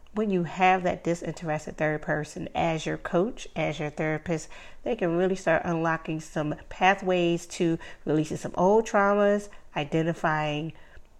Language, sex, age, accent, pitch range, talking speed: English, female, 40-59, American, 155-190 Hz, 140 wpm